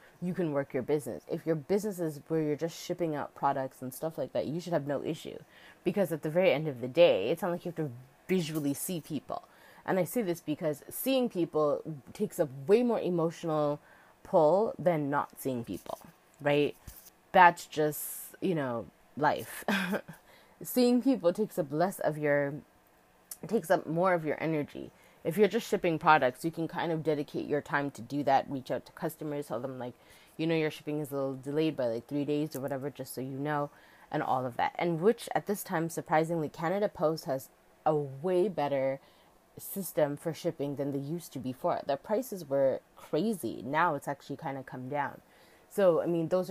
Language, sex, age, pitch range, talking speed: English, female, 20-39, 140-175 Hz, 200 wpm